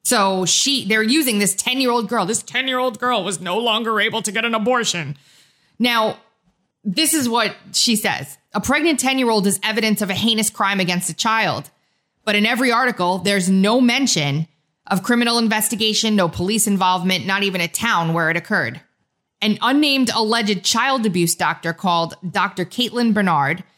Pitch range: 175-225 Hz